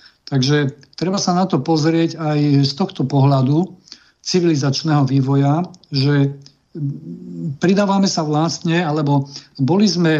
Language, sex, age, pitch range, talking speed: Slovak, male, 50-69, 140-160 Hz, 110 wpm